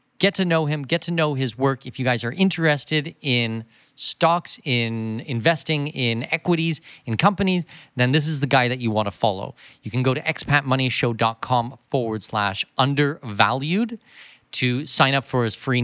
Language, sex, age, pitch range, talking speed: English, male, 30-49, 110-150 Hz, 175 wpm